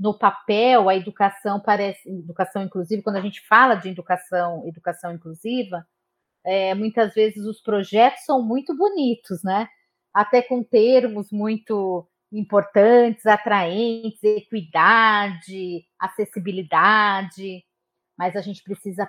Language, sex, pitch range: Portuguese, female, 180-220 Hz